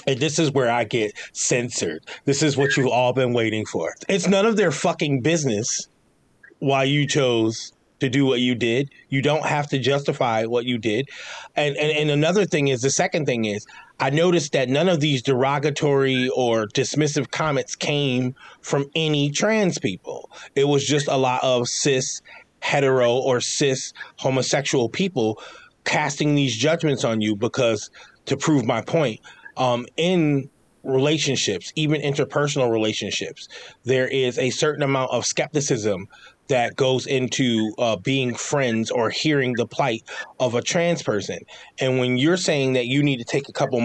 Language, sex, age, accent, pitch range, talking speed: English, male, 30-49, American, 125-150 Hz, 165 wpm